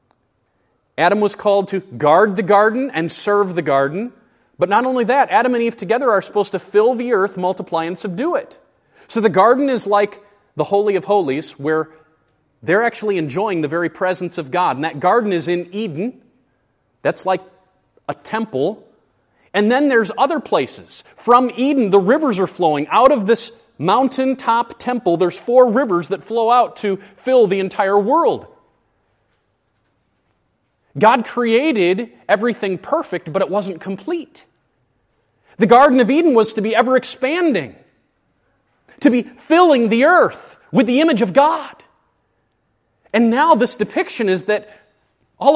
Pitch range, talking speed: 175-245 Hz, 155 wpm